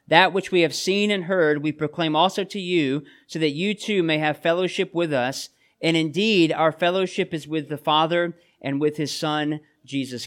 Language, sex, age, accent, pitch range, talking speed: English, male, 40-59, American, 150-190 Hz, 200 wpm